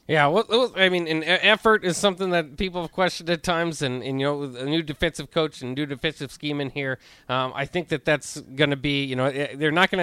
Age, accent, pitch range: 30-49, American, 140-185 Hz